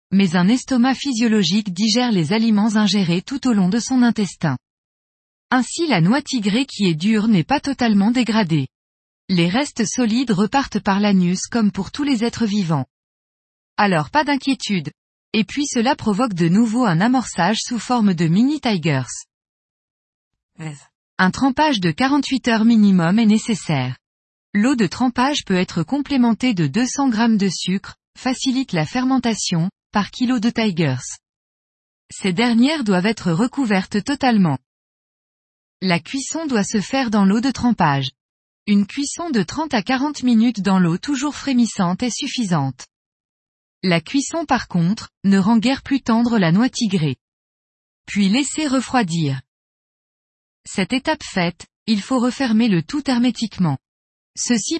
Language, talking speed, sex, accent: French, 145 wpm, female, French